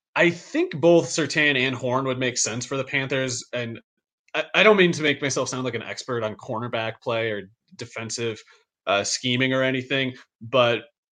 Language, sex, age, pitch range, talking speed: English, male, 30-49, 110-135 Hz, 185 wpm